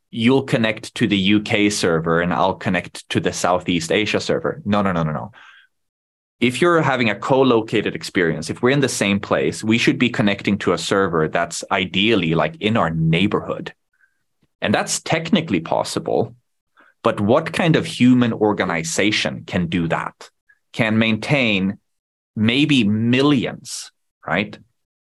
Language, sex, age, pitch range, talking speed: English, male, 20-39, 90-120 Hz, 150 wpm